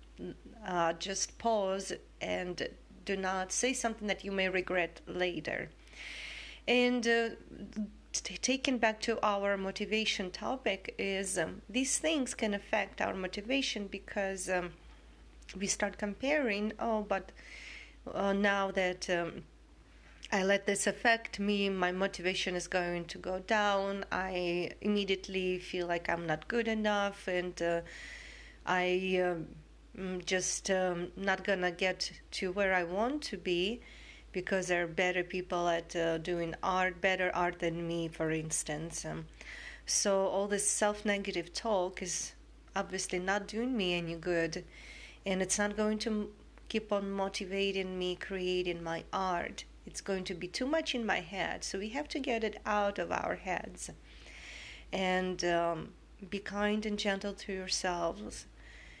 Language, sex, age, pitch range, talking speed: English, female, 30-49, 180-210 Hz, 145 wpm